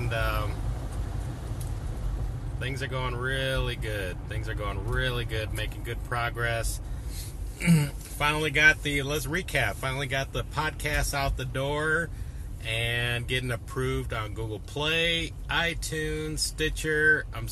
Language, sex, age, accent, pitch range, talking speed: English, male, 30-49, American, 105-130 Hz, 120 wpm